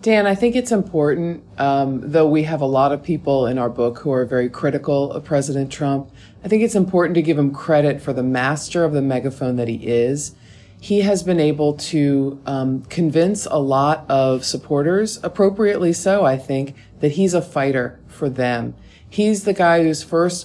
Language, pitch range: English, 135-170 Hz